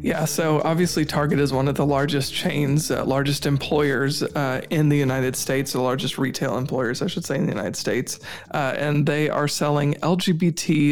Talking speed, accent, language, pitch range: 200 wpm, American, English, 130-150 Hz